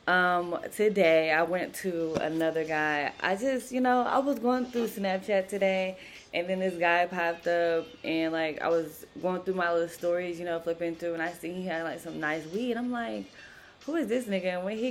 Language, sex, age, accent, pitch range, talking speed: English, female, 20-39, American, 155-185 Hz, 215 wpm